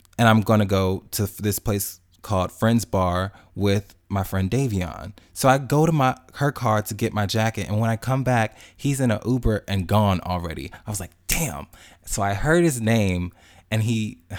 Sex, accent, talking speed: male, American, 200 wpm